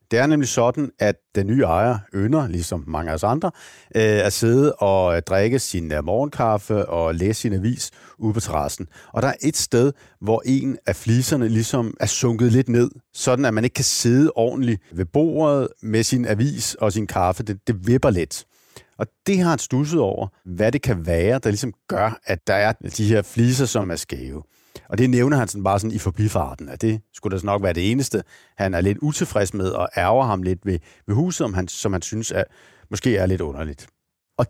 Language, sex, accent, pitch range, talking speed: Danish, male, native, 100-130 Hz, 215 wpm